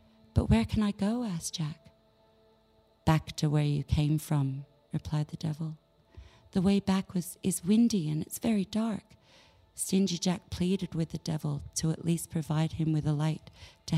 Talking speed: 170 wpm